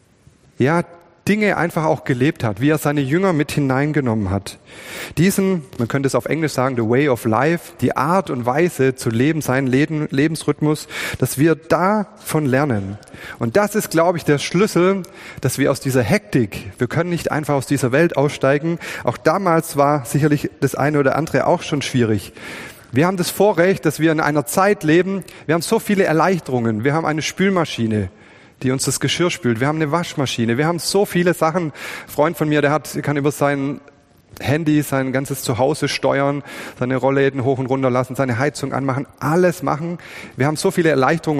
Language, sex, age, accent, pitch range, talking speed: German, male, 30-49, German, 125-160 Hz, 190 wpm